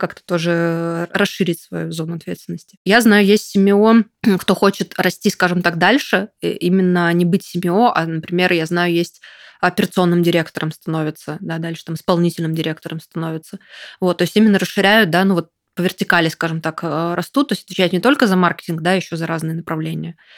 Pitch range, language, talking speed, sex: 165-195 Hz, Russian, 175 wpm, female